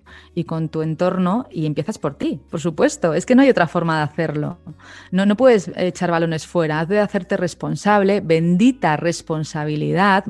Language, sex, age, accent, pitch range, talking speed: Spanish, female, 30-49, Spanish, 170-210 Hz, 175 wpm